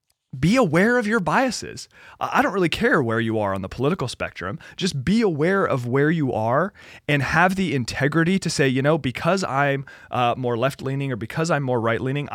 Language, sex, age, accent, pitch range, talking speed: English, male, 30-49, American, 115-155 Hz, 200 wpm